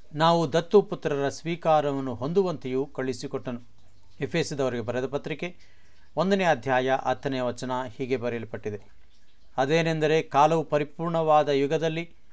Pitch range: 125-165 Hz